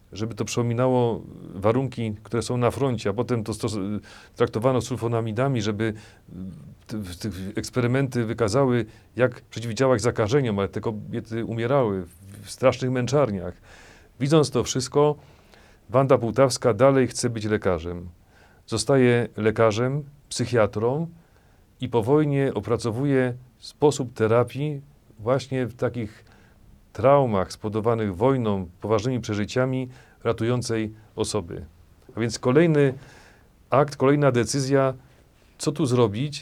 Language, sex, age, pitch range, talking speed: Polish, male, 40-59, 105-130 Hz, 110 wpm